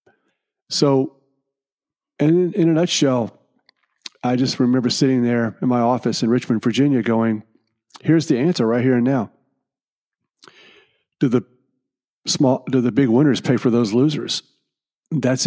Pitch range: 115-135 Hz